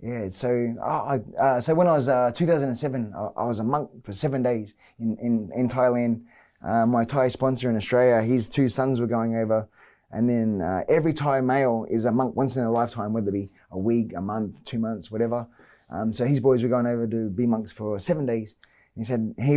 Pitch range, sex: 115-135 Hz, male